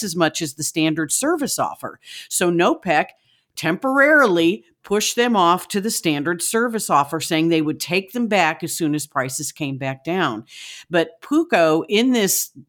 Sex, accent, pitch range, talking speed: female, American, 155-205 Hz, 170 wpm